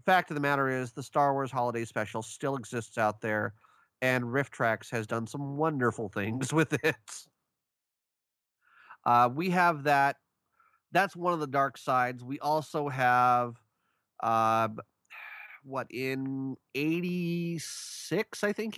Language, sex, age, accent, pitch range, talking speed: English, male, 30-49, American, 120-160 Hz, 135 wpm